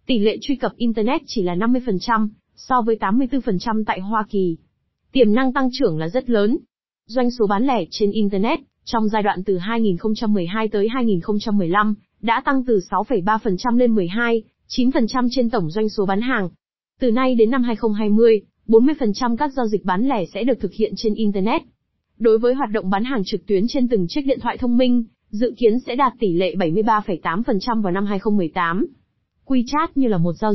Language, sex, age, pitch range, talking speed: Vietnamese, female, 20-39, 200-245 Hz, 185 wpm